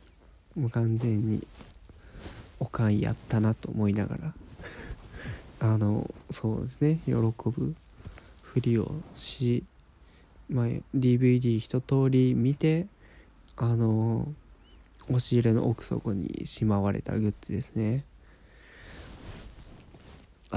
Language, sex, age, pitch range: Japanese, male, 20-39, 105-135 Hz